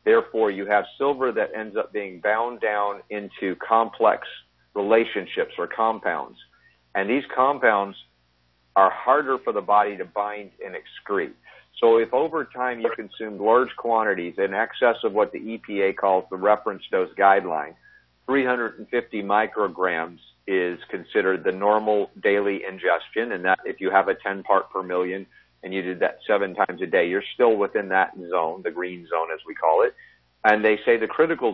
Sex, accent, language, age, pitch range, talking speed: male, American, English, 50-69, 95-130 Hz, 170 wpm